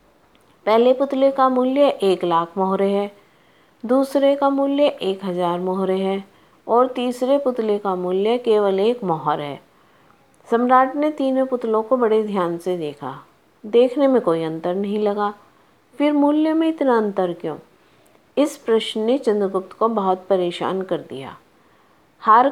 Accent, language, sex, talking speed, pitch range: native, Hindi, female, 145 wpm, 195-265 Hz